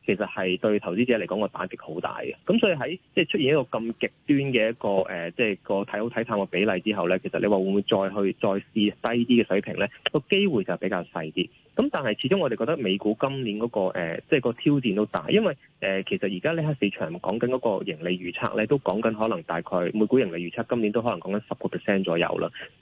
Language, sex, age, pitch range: Chinese, male, 20-39, 95-120 Hz